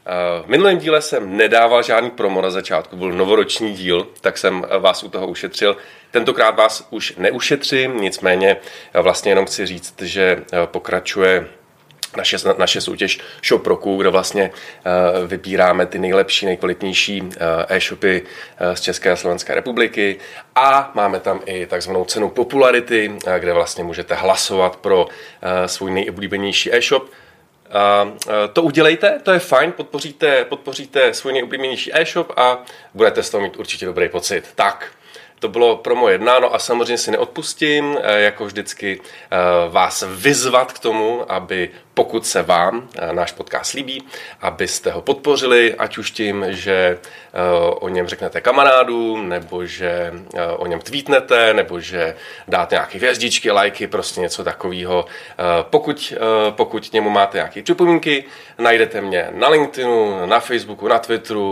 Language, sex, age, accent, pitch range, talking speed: Czech, male, 30-49, native, 95-150 Hz, 140 wpm